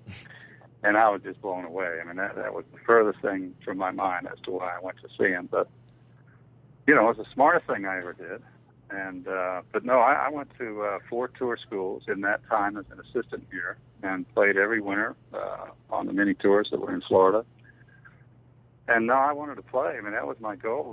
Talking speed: 230 wpm